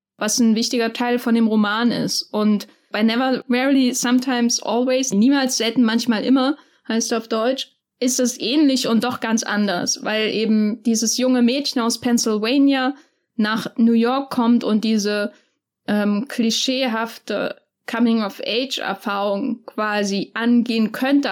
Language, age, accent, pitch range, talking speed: German, 10-29, German, 215-250 Hz, 130 wpm